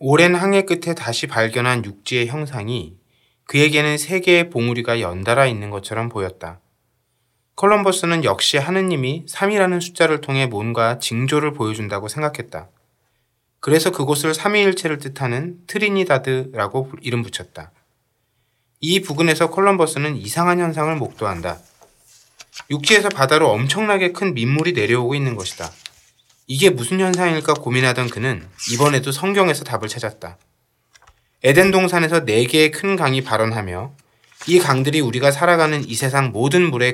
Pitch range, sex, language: 115-160 Hz, male, Korean